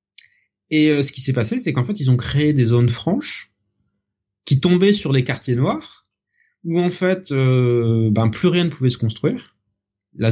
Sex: male